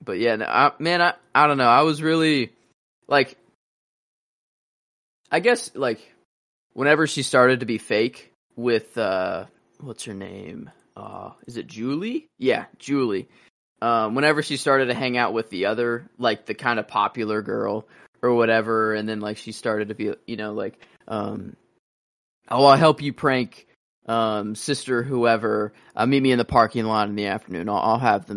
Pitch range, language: 110-135 Hz, English